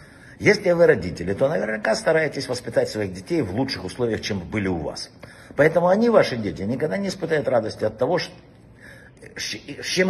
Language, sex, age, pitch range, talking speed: Russian, male, 60-79, 110-165 Hz, 165 wpm